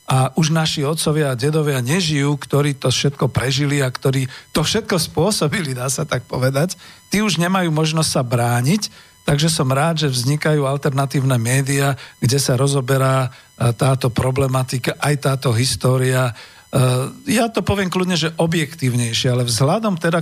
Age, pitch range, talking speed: 50-69, 130-155 Hz, 150 wpm